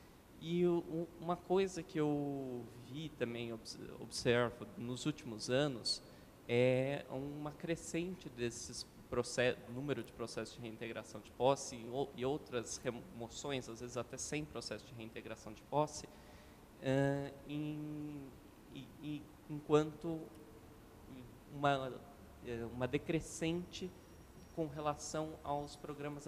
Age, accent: 20-39, Brazilian